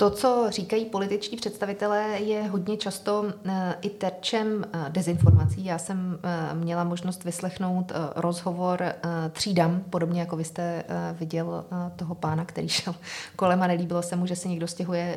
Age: 30-49